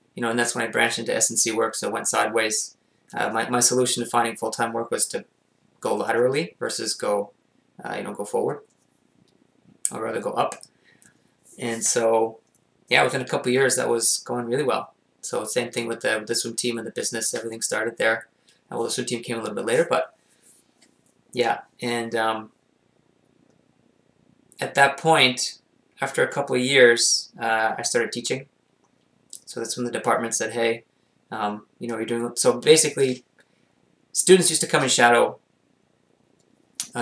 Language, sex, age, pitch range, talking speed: English, male, 20-39, 115-125 Hz, 180 wpm